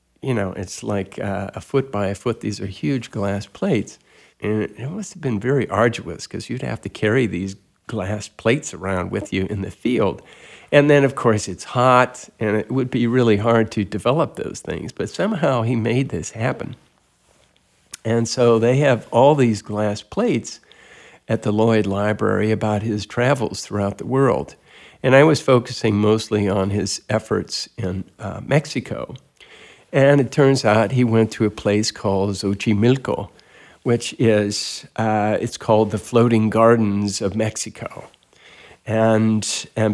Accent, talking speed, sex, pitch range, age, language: American, 165 wpm, male, 100-120 Hz, 50-69, English